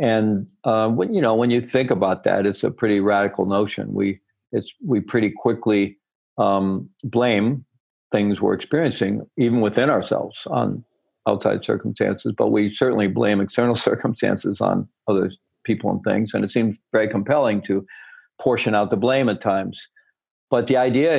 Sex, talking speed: male, 160 wpm